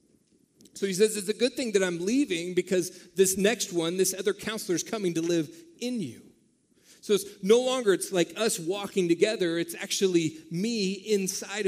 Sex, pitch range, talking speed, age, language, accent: male, 155-205 Hz, 185 wpm, 40-59, English, American